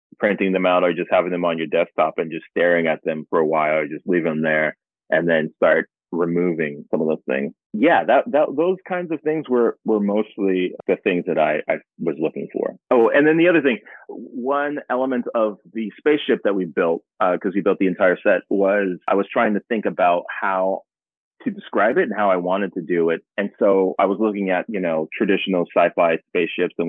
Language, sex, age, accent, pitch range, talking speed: English, male, 30-49, American, 85-115 Hz, 225 wpm